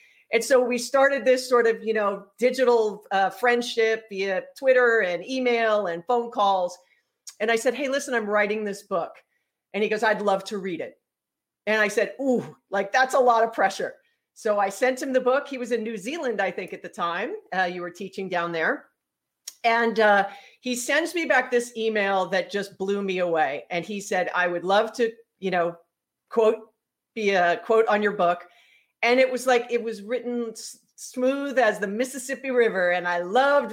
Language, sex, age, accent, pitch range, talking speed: English, female, 40-59, American, 190-240 Hz, 200 wpm